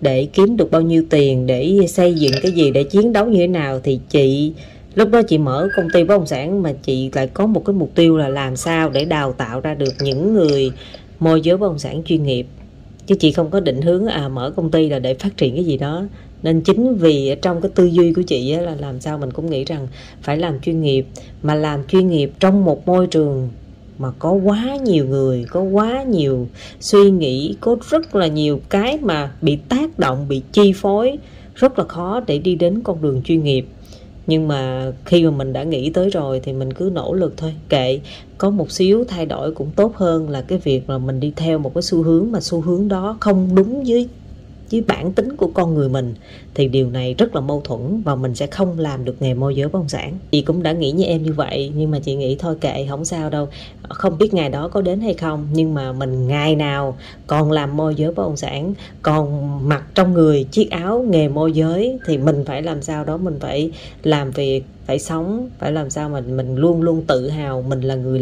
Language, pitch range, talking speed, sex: Vietnamese, 135-185 Hz, 235 wpm, female